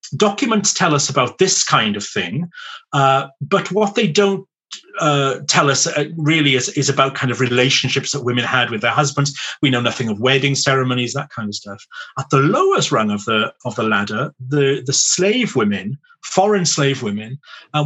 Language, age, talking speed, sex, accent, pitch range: English, 40-59, 190 wpm, male, British, 125-165 Hz